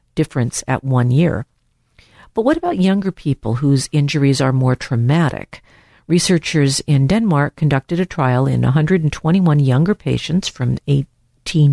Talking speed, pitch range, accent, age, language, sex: 135 wpm, 130-155 Hz, American, 50-69, English, female